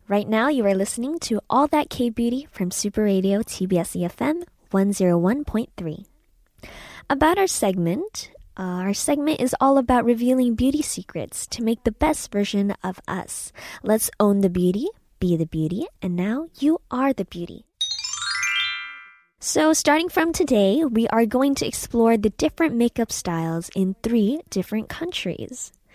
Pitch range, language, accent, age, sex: 190-255 Hz, Korean, American, 20-39, female